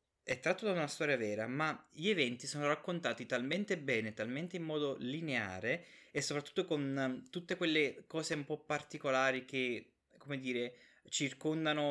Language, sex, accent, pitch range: Italian, male, native, 130-175 Hz